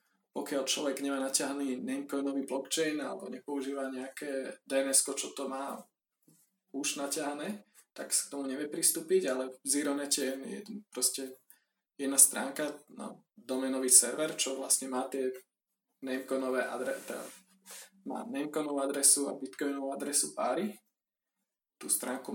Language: Slovak